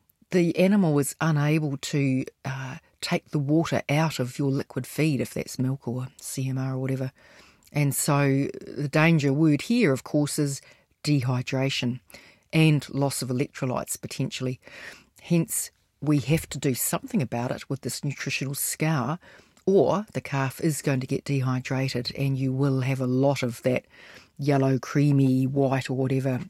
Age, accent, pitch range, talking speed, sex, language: 40-59, Australian, 130-155 Hz, 155 wpm, female, English